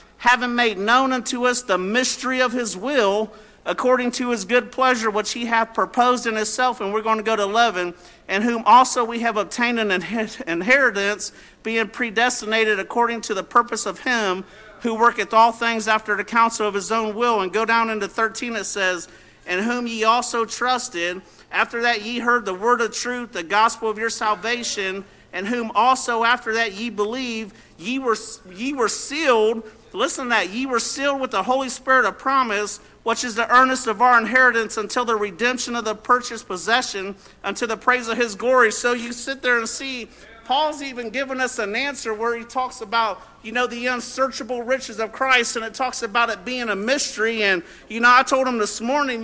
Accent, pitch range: American, 215-250 Hz